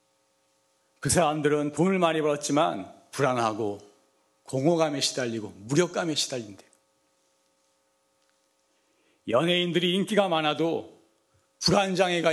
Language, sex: Korean, male